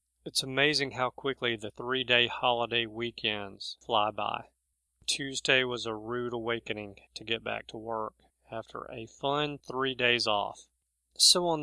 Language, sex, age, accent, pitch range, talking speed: English, male, 40-59, American, 115-145 Hz, 145 wpm